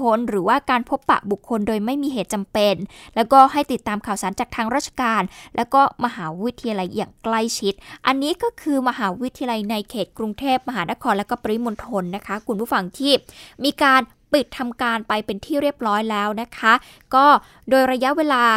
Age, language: 20-39, Thai